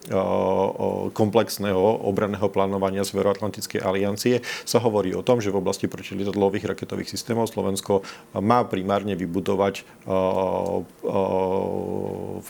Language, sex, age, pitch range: Slovak, male, 40-59, 95-110 Hz